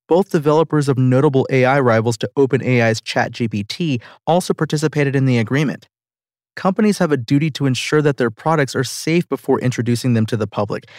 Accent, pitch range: American, 120-145 Hz